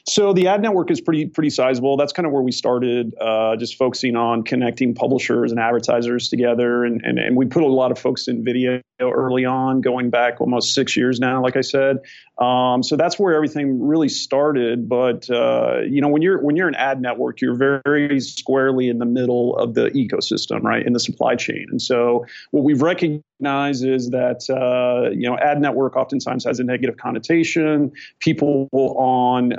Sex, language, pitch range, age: male, English, 125-145 Hz, 40-59